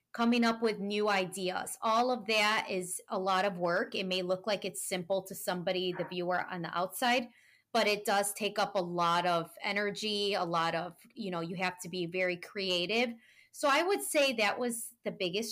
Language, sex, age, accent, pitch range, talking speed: English, female, 20-39, American, 180-210 Hz, 210 wpm